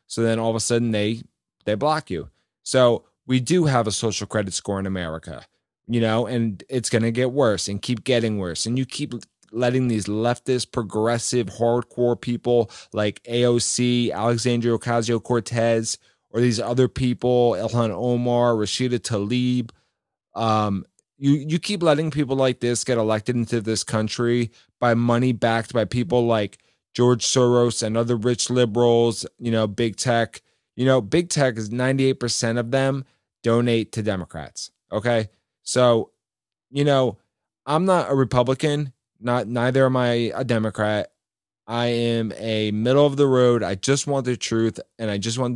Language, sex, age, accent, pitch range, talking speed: English, male, 30-49, American, 110-125 Hz, 160 wpm